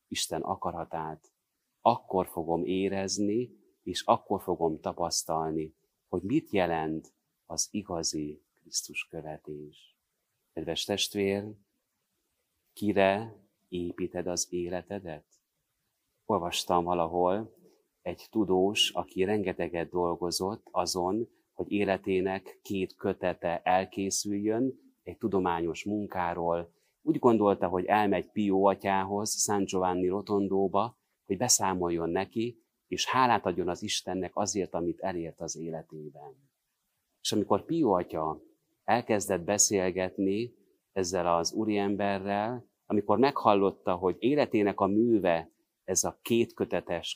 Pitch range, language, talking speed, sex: 85-100 Hz, Hungarian, 100 wpm, male